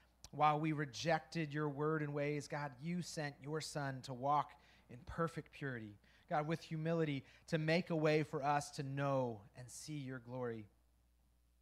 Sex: male